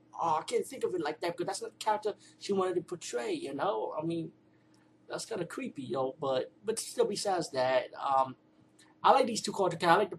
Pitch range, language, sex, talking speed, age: 135-155 Hz, English, male, 235 wpm, 20-39